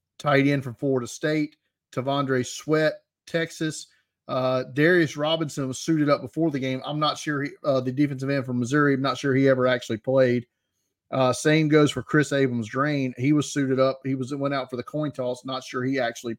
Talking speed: 210 wpm